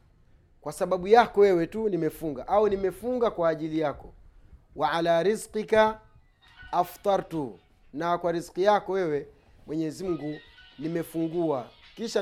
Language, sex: Swahili, male